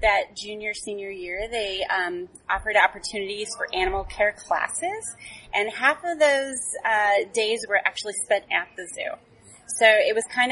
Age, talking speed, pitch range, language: 30-49, 155 wpm, 195-255 Hz, English